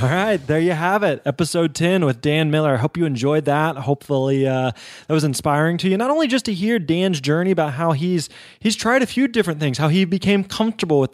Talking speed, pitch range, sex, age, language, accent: 230 wpm, 140-185 Hz, male, 20-39, English, American